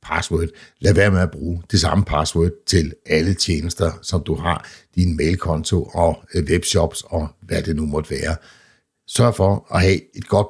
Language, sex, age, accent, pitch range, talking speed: Danish, male, 60-79, native, 80-100 Hz, 175 wpm